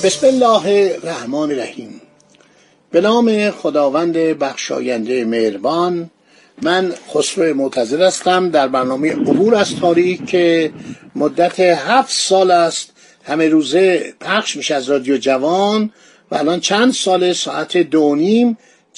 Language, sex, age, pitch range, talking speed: Persian, male, 50-69, 155-205 Hz, 110 wpm